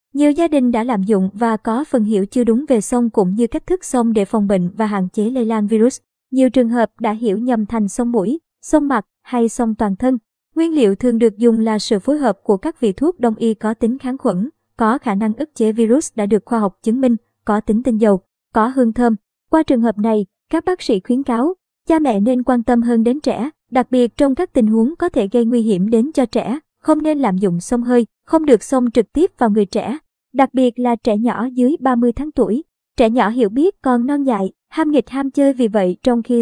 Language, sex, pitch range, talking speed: Vietnamese, male, 220-270 Hz, 245 wpm